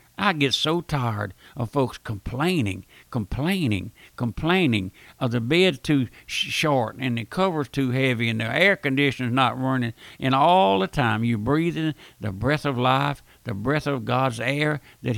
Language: English